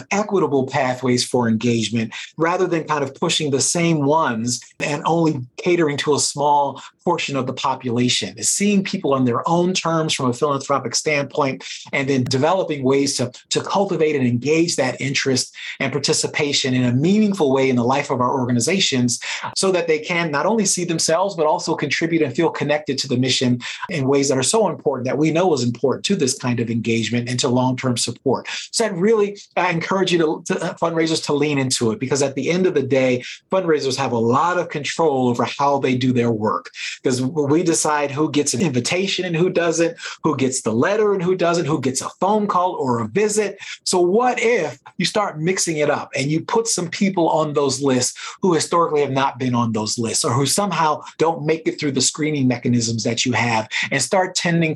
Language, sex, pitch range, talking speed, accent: English, male, 130-170 Hz, 210 wpm, American